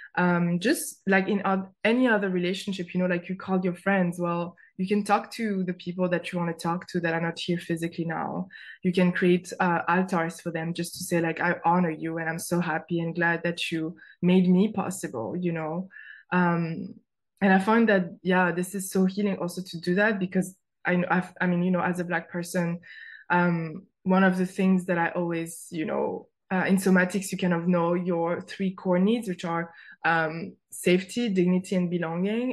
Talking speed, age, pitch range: 210 wpm, 20-39, 170-190 Hz